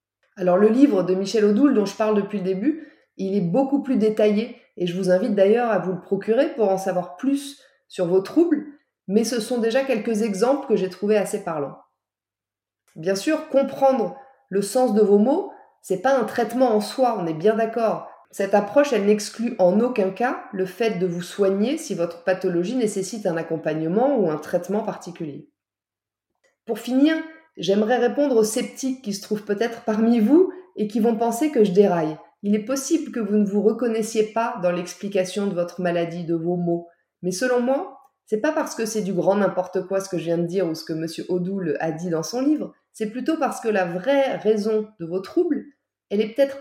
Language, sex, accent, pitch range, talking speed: French, female, French, 185-250 Hz, 210 wpm